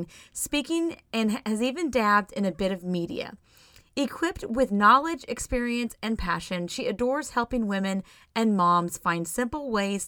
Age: 30-49